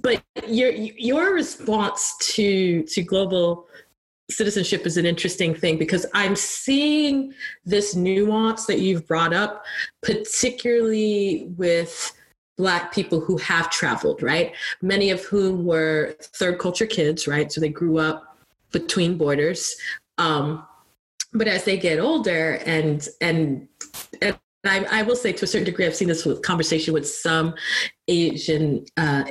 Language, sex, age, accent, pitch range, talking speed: English, female, 30-49, American, 155-195 Hz, 135 wpm